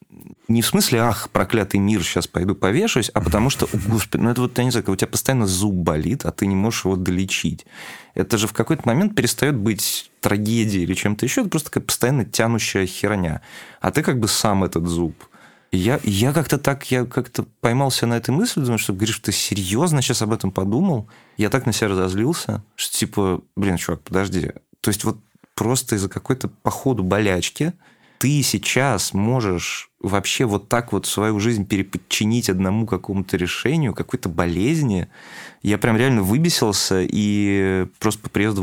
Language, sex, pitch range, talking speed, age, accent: Russian, male, 95-120 Hz, 180 wpm, 20-39, native